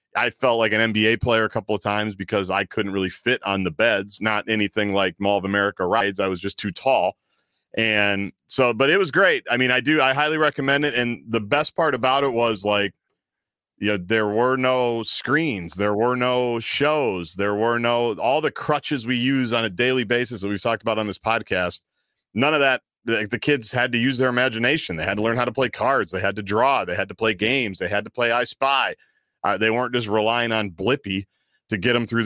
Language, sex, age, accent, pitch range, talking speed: English, male, 40-59, American, 100-120 Hz, 235 wpm